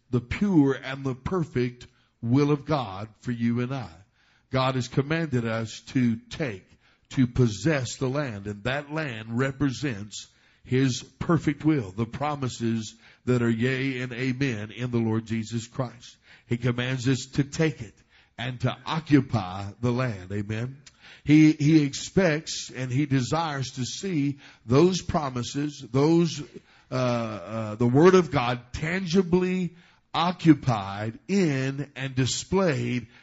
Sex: male